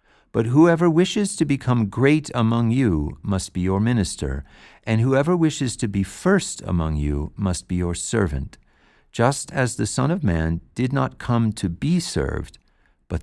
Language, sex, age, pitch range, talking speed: English, male, 50-69, 80-130 Hz, 170 wpm